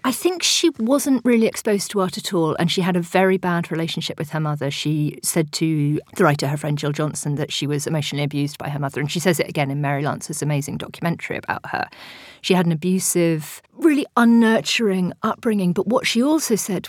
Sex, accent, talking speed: female, British, 215 wpm